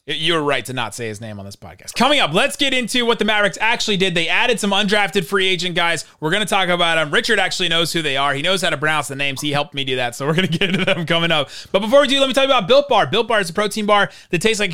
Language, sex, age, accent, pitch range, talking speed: English, male, 30-49, American, 135-185 Hz, 325 wpm